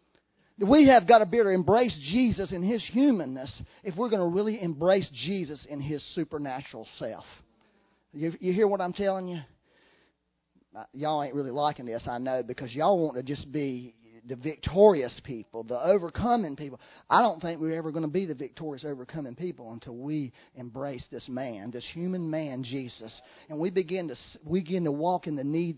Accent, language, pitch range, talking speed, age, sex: American, English, 135-190 Hz, 190 wpm, 40-59, male